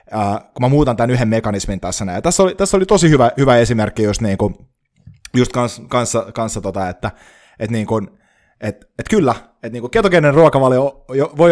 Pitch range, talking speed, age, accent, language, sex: 100-135 Hz, 135 wpm, 20-39, native, Finnish, male